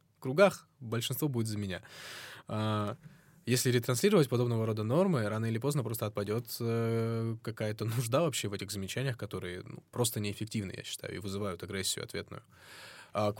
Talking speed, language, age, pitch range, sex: 145 wpm, Russian, 20-39, 110-140 Hz, male